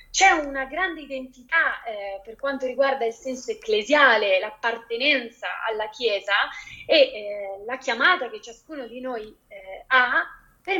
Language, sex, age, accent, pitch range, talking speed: Italian, female, 30-49, native, 210-275 Hz, 140 wpm